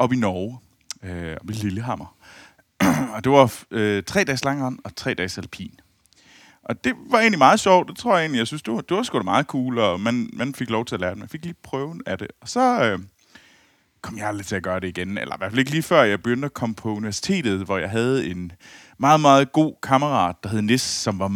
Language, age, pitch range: Danish, 30-49, 105-150 Hz